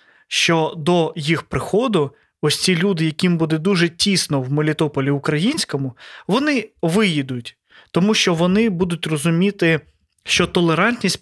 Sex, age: male, 20-39